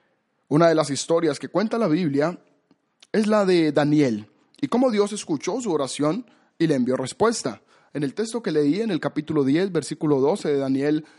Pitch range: 150-205 Hz